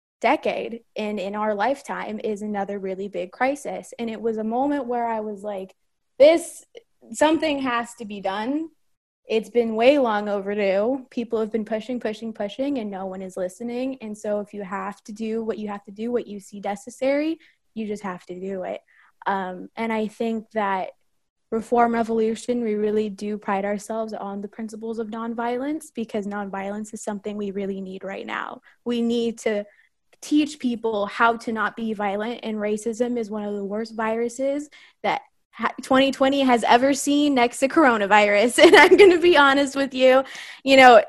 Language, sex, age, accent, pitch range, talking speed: English, female, 20-39, American, 205-250 Hz, 180 wpm